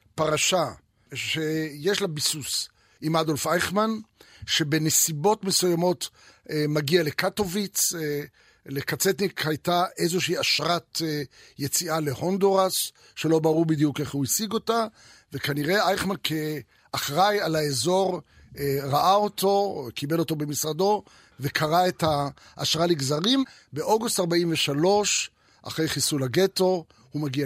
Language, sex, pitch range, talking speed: Hebrew, male, 150-185 Hz, 100 wpm